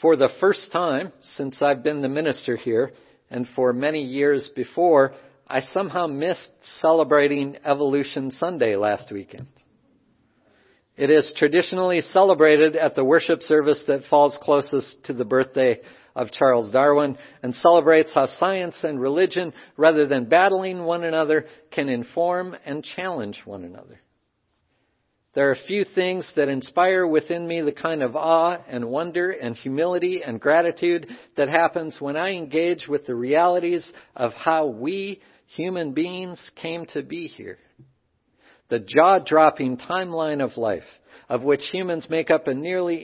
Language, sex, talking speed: English, male, 145 wpm